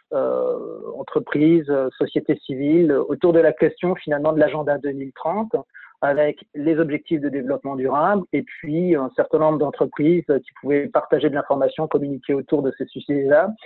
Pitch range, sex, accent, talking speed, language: 140-180 Hz, male, French, 150 wpm, French